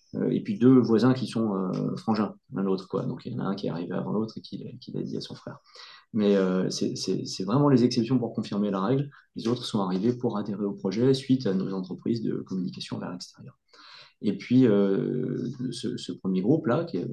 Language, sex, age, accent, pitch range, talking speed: French, male, 30-49, French, 100-130 Hz, 230 wpm